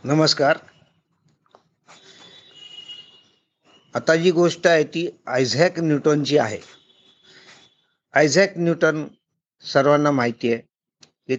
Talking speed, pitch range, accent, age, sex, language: 65 wpm, 145-195 Hz, native, 50-69, male, Marathi